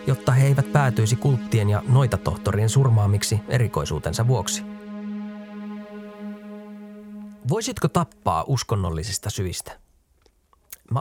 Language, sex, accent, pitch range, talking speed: Finnish, male, native, 105-150 Hz, 80 wpm